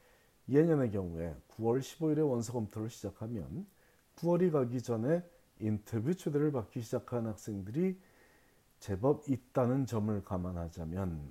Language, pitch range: Korean, 100-135 Hz